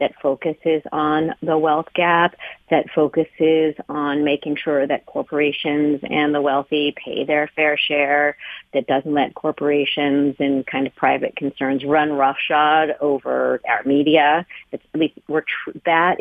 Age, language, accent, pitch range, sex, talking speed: 40-59, English, American, 145-175 Hz, female, 140 wpm